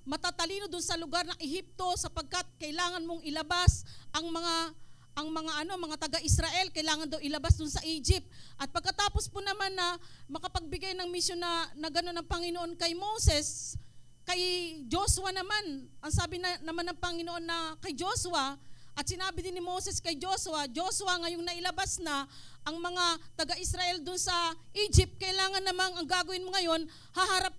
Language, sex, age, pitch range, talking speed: English, female, 40-59, 335-380 Hz, 165 wpm